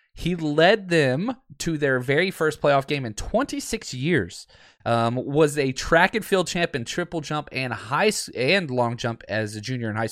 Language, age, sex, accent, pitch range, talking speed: English, 20-39, male, American, 115-160 Hz, 190 wpm